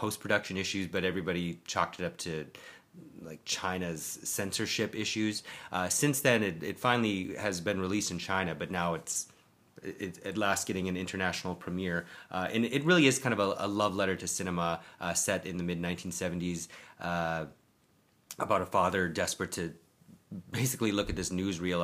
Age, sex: 30-49, male